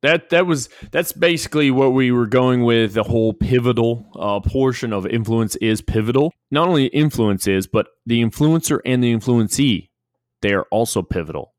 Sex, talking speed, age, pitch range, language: male, 170 wpm, 20-39, 110-145 Hz, English